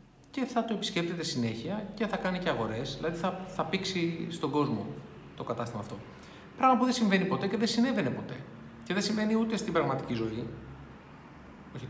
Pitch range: 130-195 Hz